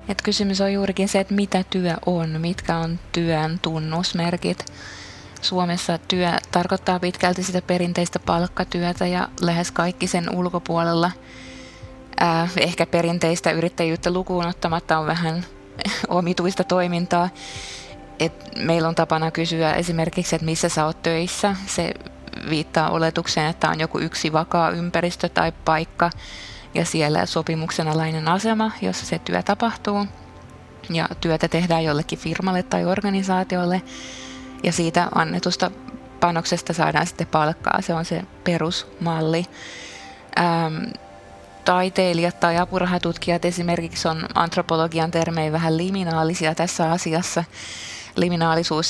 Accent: native